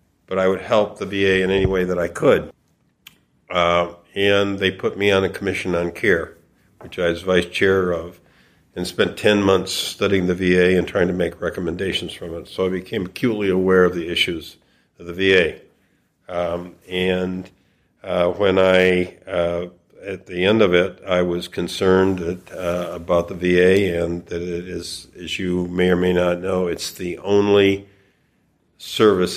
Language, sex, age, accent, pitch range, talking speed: English, male, 50-69, American, 85-95 Hz, 175 wpm